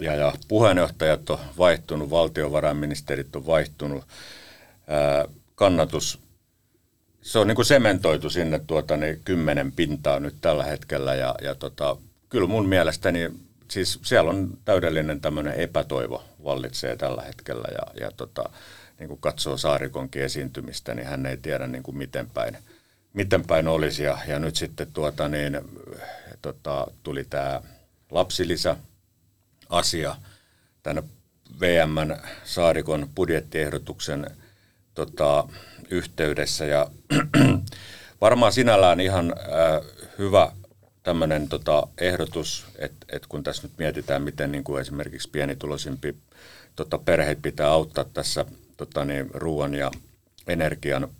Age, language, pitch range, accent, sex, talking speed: 50-69, Finnish, 75-90 Hz, native, male, 120 wpm